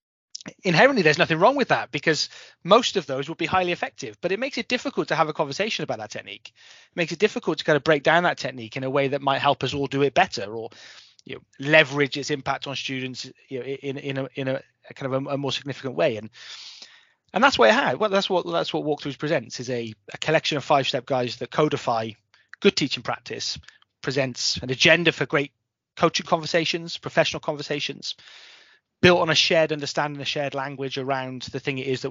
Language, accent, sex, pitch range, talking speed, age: English, British, male, 135-170 Hz, 205 wpm, 30-49